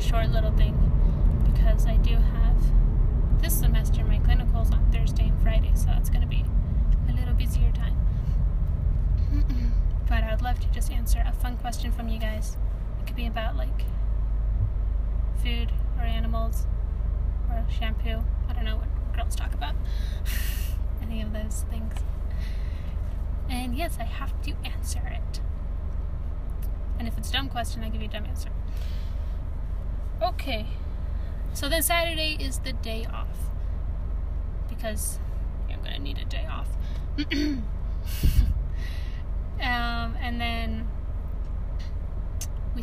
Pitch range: 75-80 Hz